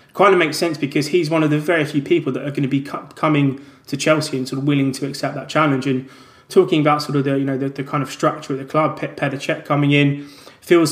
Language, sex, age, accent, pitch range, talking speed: English, male, 20-39, British, 135-150 Hz, 275 wpm